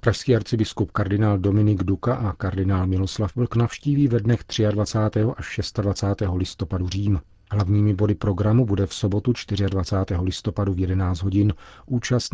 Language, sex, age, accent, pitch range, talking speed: Czech, male, 40-59, native, 90-110 Hz, 140 wpm